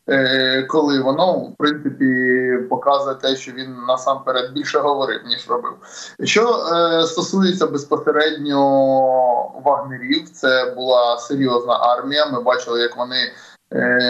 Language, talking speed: Ukrainian, 115 wpm